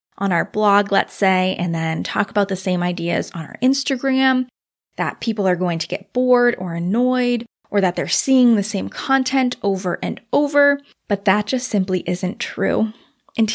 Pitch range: 190-240 Hz